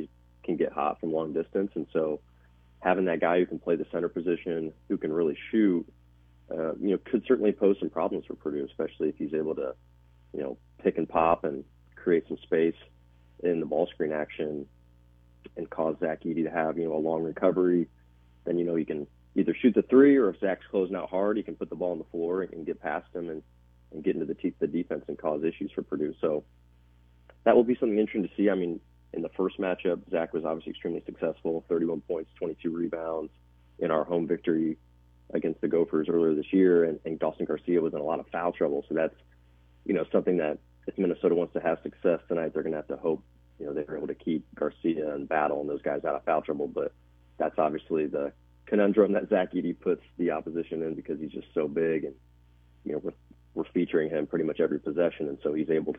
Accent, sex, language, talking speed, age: American, male, English, 225 wpm, 30-49